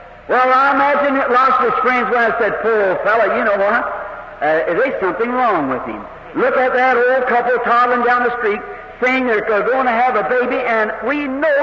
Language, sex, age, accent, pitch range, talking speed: English, male, 60-79, American, 245-335 Hz, 210 wpm